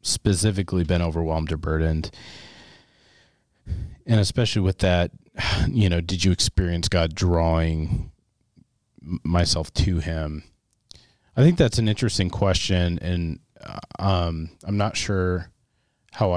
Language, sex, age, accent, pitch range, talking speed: English, male, 30-49, American, 80-100 Hz, 115 wpm